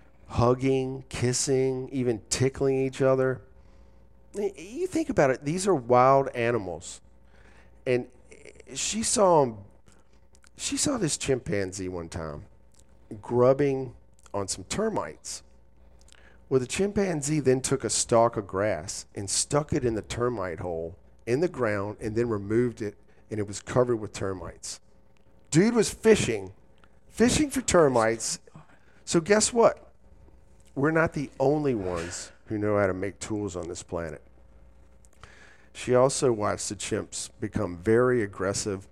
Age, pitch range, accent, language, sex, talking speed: 40-59, 95-130 Hz, American, English, male, 135 wpm